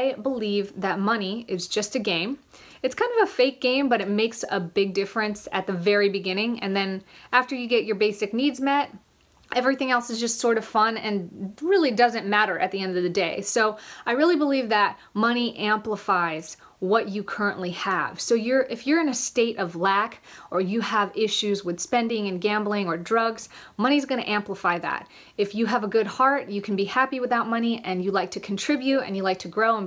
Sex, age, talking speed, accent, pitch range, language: female, 30-49, 215 wpm, American, 195-245 Hz, English